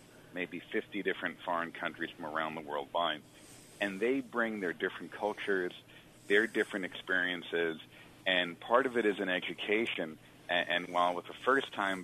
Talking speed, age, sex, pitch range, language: 155 wpm, 40-59, male, 90-105 Hz, English